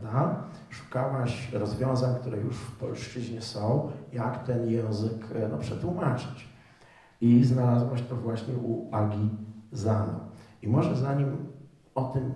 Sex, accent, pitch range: male, native, 110-130 Hz